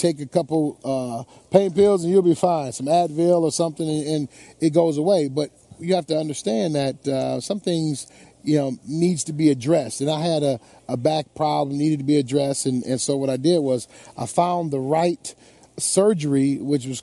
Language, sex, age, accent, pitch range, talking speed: English, male, 40-59, American, 140-170 Hz, 210 wpm